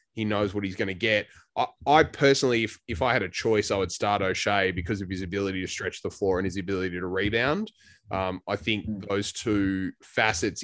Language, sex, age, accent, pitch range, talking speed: English, male, 20-39, Australian, 95-115 Hz, 220 wpm